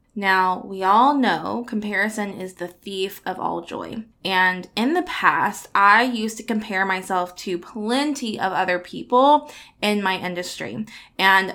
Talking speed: 150 wpm